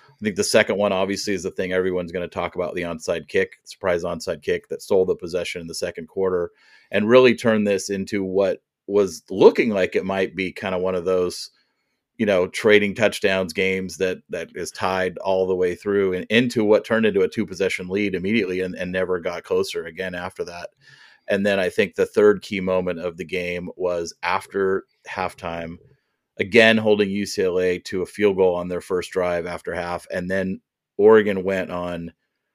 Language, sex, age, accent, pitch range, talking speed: English, male, 30-49, American, 90-110 Hz, 195 wpm